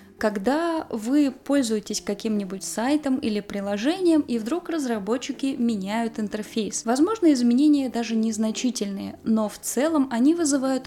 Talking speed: 115 wpm